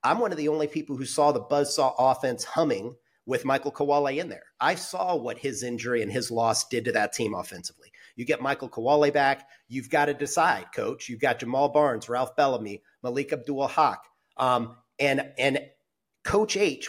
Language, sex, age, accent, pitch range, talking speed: English, male, 40-59, American, 125-155 Hz, 190 wpm